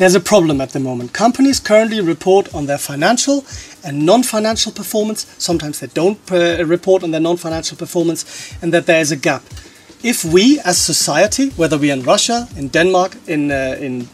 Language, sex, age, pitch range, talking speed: Russian, male, 40-59, 160-205 Hz, 175 wpm